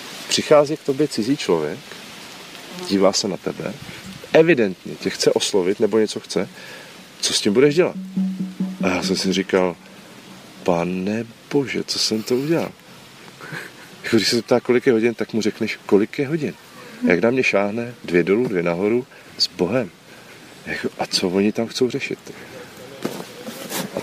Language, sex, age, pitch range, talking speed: Slovak, male, 40-59, 90-125 Hz, 150 wpm